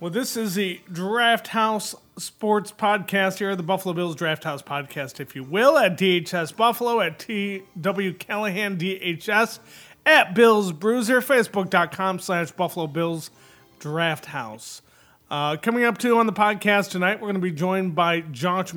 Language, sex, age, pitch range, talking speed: English, male, 30-49, 160-210 Hz, 155 wpm